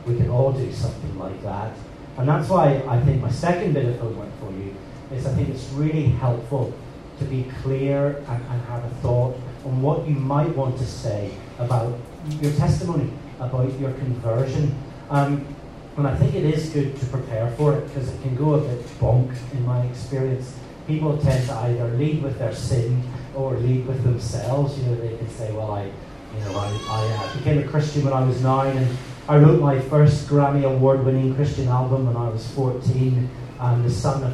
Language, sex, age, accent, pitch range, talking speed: English, male, 30-49, British, 120-140 Hz, 200 wpm